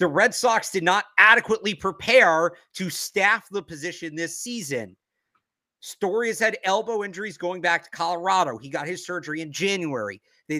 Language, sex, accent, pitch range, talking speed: English, male, American, 165-225 Hz, 165 wpm